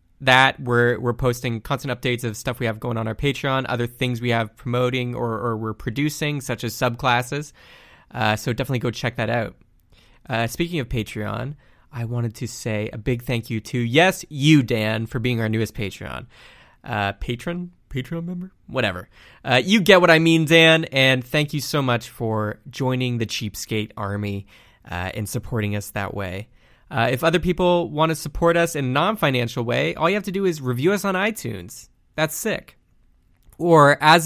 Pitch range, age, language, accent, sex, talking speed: 110-145 Hz, 20-39, English, American, male, 190 wpm